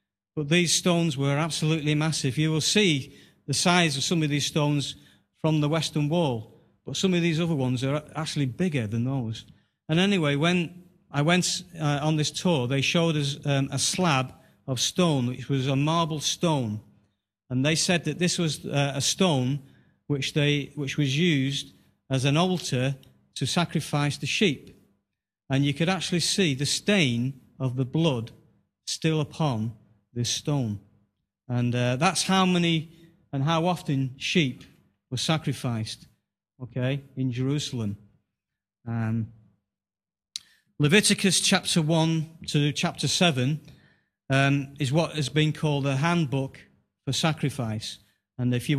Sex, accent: male, British